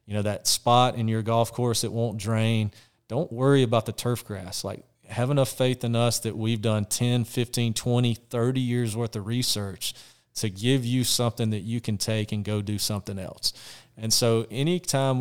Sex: male